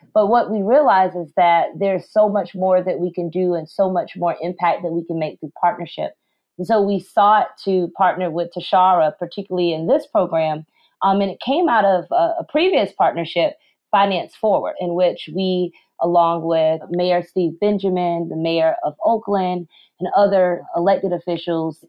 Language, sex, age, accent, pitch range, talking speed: English, female, 30-49, American, 165-195 Hz, 180 wpm